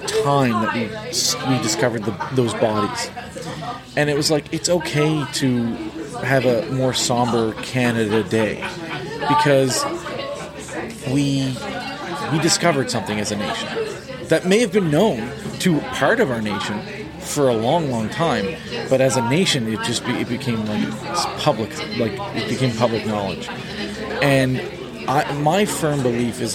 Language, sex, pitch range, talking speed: English, male, 115-150 Hz, 145 wpm